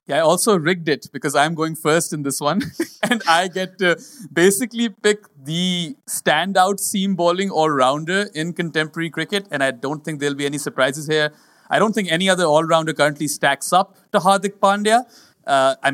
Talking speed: 185 wpm